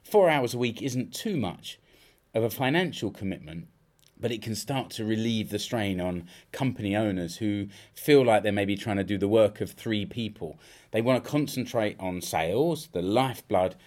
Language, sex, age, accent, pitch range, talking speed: English, male, 30-49, British, 100-140 Hz, 185 wpm